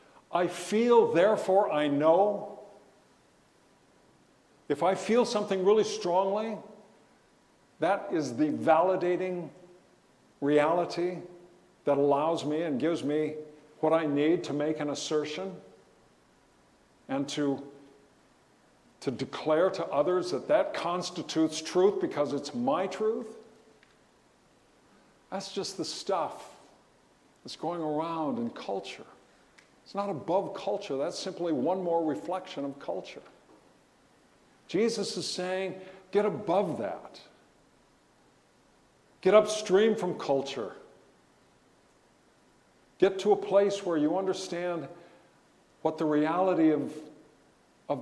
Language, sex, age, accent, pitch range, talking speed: English, male, 50-69, American, 160-210 Hz, 105 wpm